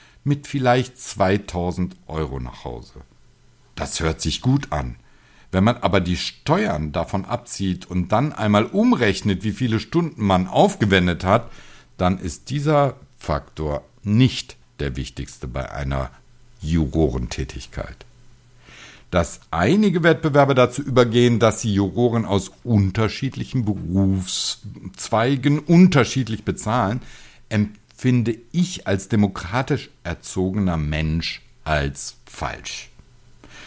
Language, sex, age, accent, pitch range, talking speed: German, male, 60-79, German, 90-120 Hz, 105 wpm